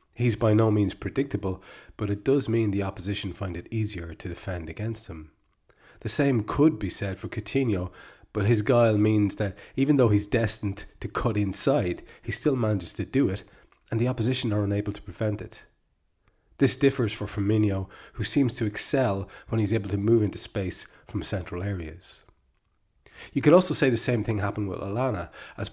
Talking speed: 185 wpm